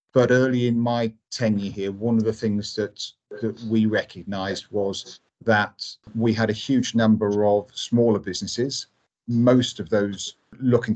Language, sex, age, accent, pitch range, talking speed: English, male, 40-59, British, 105-115 Hz, 155 wpm